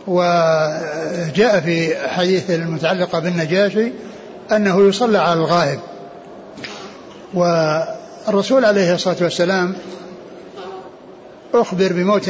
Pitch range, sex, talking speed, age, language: 170-195 Hz, male, 75 wpm, 60-79, Arabic